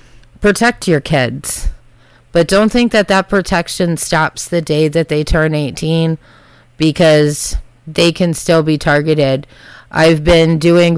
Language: English